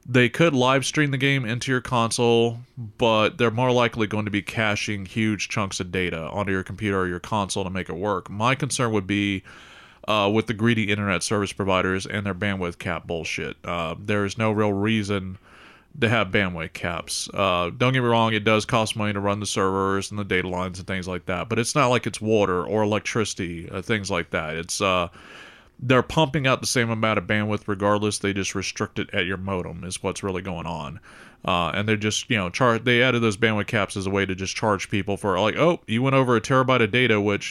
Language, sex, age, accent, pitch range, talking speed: English, male, 30-49, American, 95-120 Hz, 230 wpm